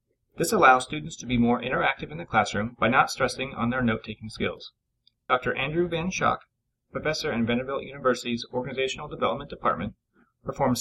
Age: 30-49